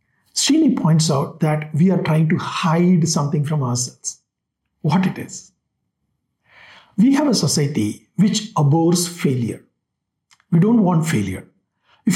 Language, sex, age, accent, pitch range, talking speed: English, male, 60-79, Indian, 150-190 Hz, 135 wpm